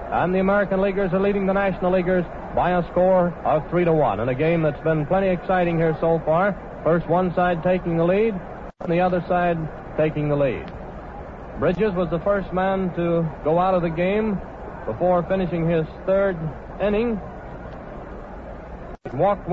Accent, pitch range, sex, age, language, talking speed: American, 165-190 Hz, male, 60-79, English, 170 wpm